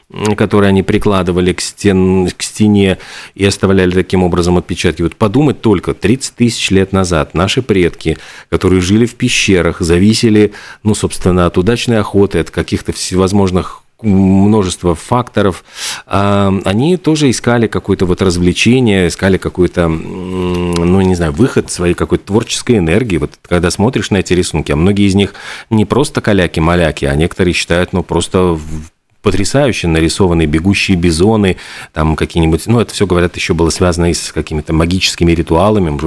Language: Russian